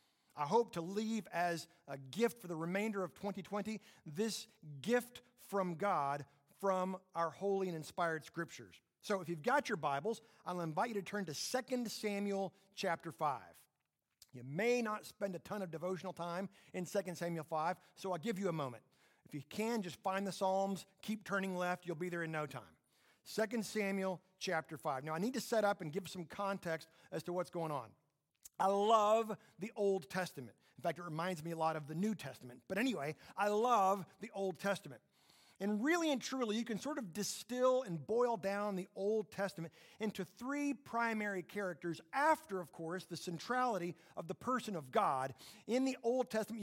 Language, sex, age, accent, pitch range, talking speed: English, male, 50-69, American, 170-220 Hz, 190 wpm